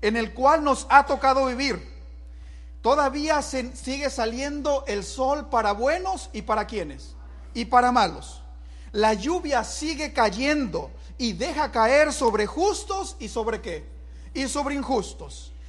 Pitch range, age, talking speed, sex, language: 215-280 Hz, 50-69, 135 wpm, male, English